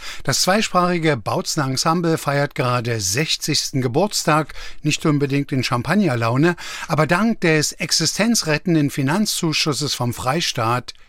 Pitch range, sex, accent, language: 125-175 Hz, male, German, German